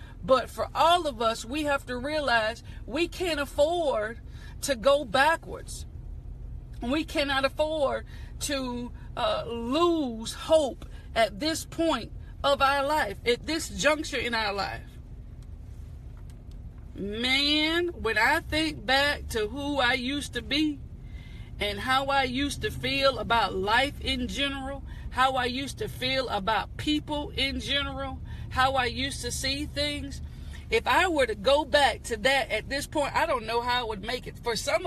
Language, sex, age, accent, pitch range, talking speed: English, female, 40-59, American, 250-305 Hz, 155 wpm